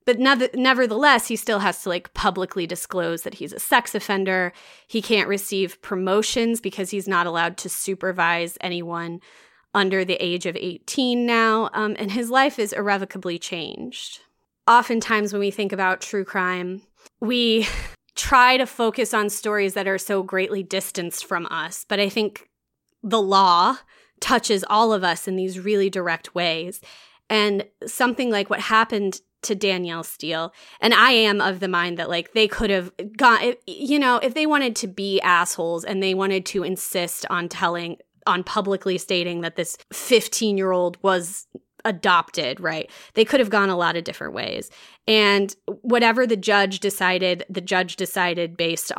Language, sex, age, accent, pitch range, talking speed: English, female, 20-39, American, 180-220 Hz, 165 wpm